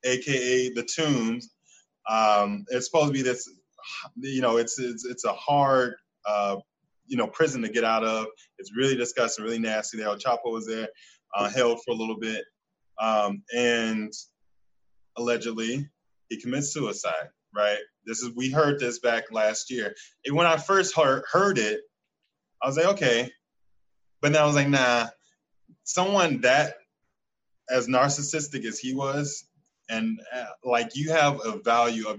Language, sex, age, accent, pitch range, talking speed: English, male, 20-39, American, 115-150 Hz, 160 wpm